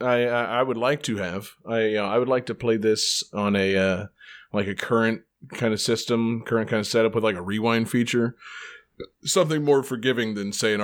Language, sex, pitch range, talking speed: English, male, 105-145 Hz, 210 wpm